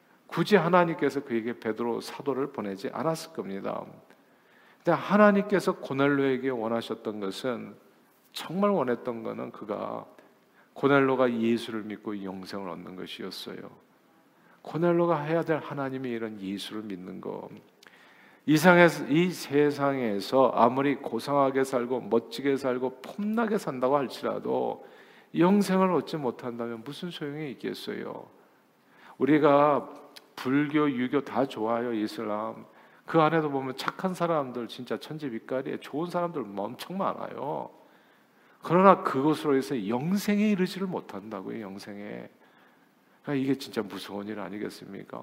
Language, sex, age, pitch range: Korean, male, 50-69, 115-150 Hz